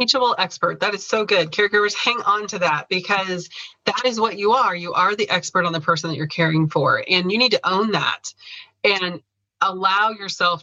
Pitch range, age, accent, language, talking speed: 170-210 Hz, 30-49, American, English, 210 wpm